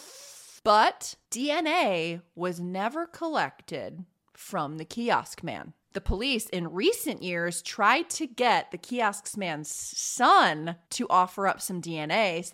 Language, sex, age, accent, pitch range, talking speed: English, female, 30-49, American, 175-280 Hz, 130 wpm